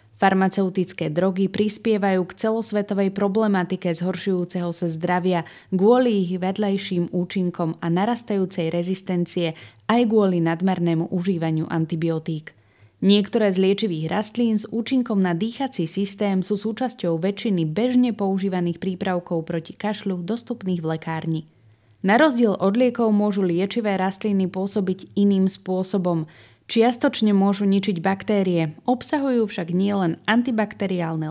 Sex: female